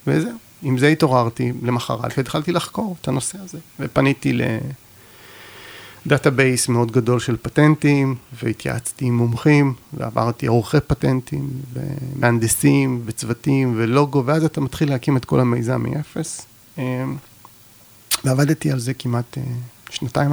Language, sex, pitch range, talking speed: Hebrew, male, 120-145 Hz, 110 wpm